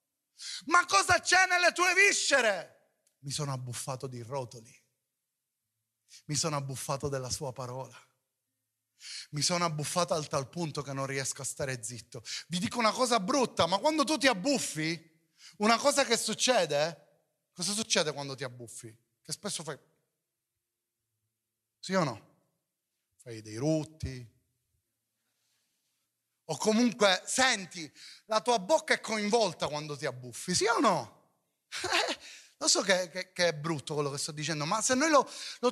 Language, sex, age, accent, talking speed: Italian, male, 30-49, native, 145 wpm